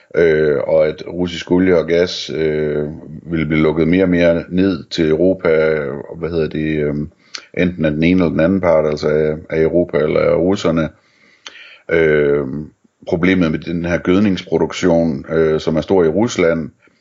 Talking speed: 175 wpm